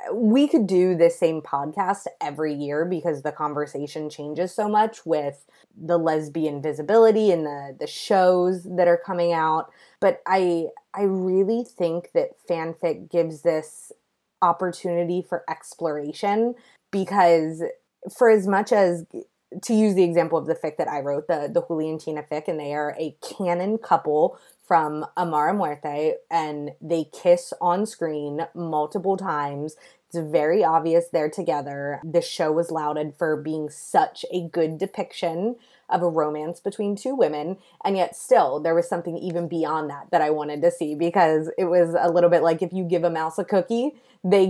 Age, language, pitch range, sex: 20-39, English, 160-205 Hz, female